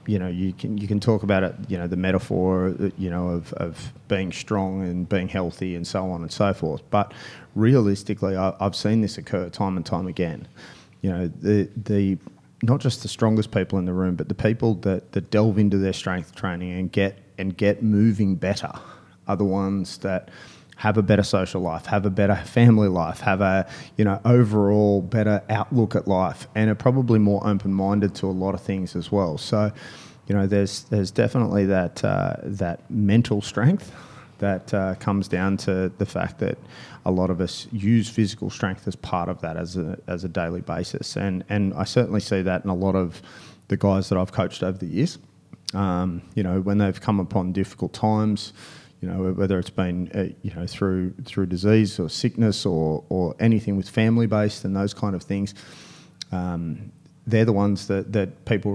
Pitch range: 95-105 Hz